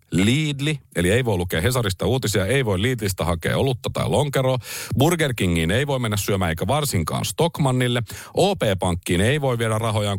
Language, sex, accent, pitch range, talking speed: Finnish, male, native, 90-135 Hz, 165 wpm